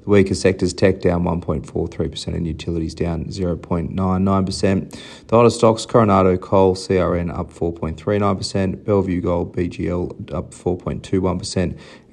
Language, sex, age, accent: English, male, 30-49, Australian